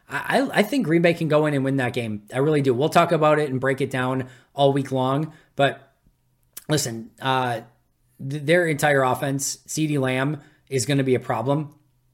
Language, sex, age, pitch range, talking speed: English, male, 20-39, 125-145 Hz, 200 wpm